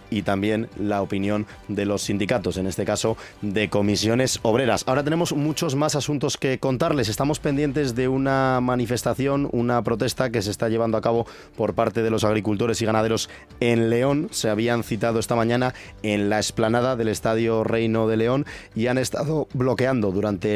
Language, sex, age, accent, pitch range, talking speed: Spanish, male, 30-49, Spanish, 105-125 Hz, 175 wpm